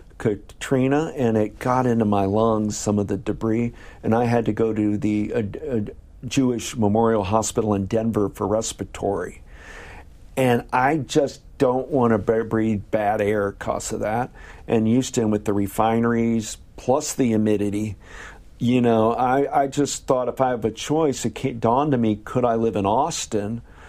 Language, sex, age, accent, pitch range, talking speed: English, male, 50-69, American, 105-125 Hz, 170 wpm